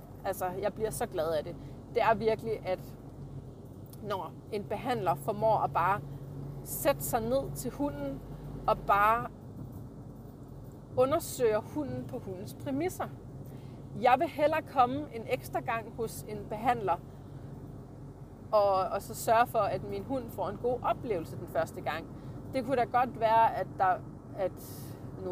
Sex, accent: female, native